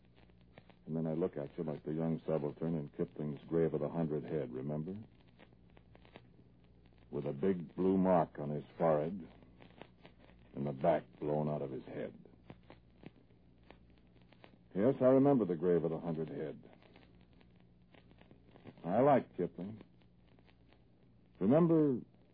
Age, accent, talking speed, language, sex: 60-79, American, 125 wpm, English, male